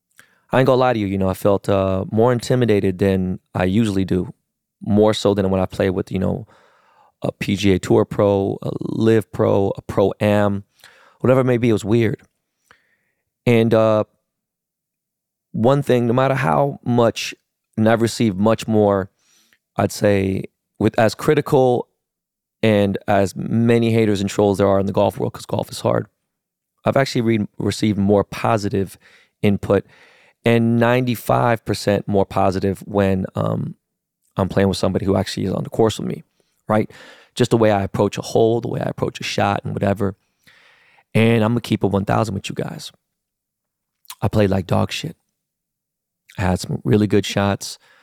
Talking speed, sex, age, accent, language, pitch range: 170 wpm, male, 20-39, American, English, 100-115 Hz